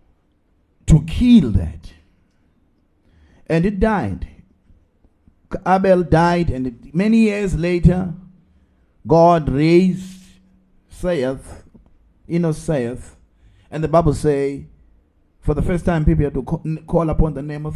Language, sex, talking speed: English, male, 110 wpm